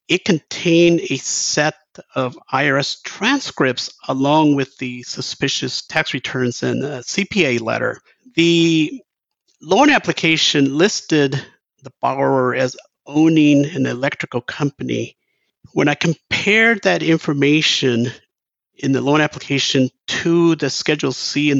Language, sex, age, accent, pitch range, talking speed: English, male, 50-69, American, 135-175 Hz, 115 wpm